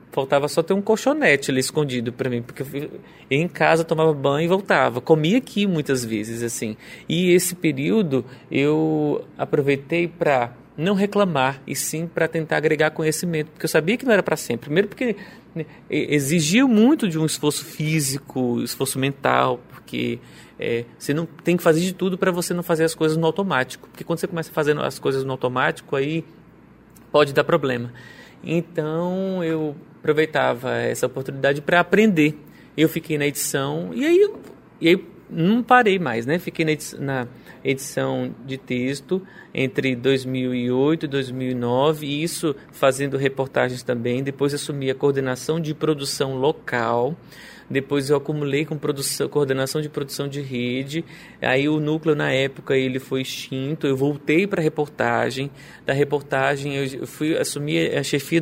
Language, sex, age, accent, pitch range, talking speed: Portuguese, male, 30-49, Brazilian, 130-165 Hz, 165 wpm